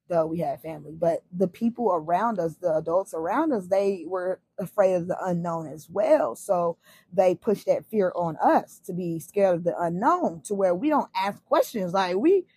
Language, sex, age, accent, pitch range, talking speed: English, female, 20-39, American, 190-240 Hz, 200 wpm